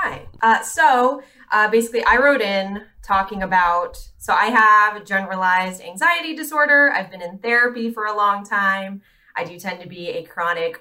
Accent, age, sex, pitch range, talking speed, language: American, 20-39, female, 175-235 Hz, 170 wpm, English